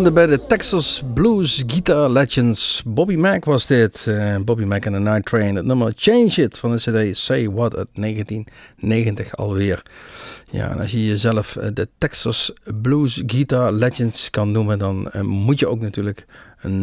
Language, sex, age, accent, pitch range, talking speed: Dutch, male, 50-69, Dutch, 105-135 Hz, 170 wpm